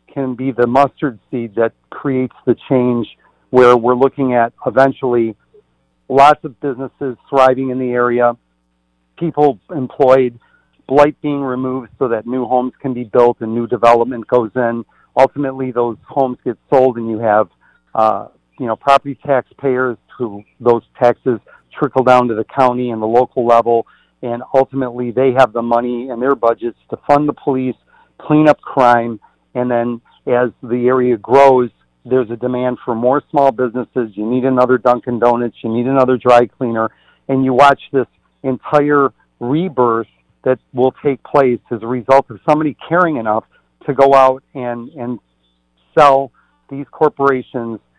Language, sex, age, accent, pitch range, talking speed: English, male, 50-69, American, 120-135 Hz, 160 wpm